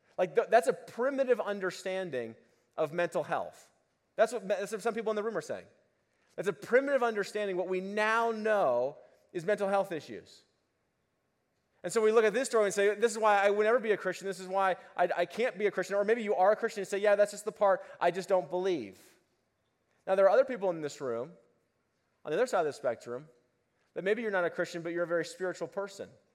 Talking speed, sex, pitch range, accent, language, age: 240 wpm, male, 175-215 Hz, American, English, 30-49